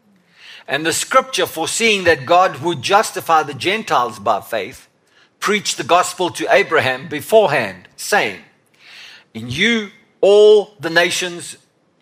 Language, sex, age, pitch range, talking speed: English, male, 50-69, 155-195 Hz, 120 wpm